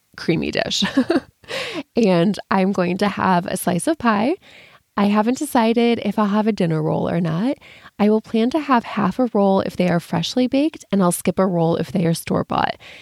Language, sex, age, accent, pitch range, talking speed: English, female, 20-39, American, 175-230 Hz, 205 wpm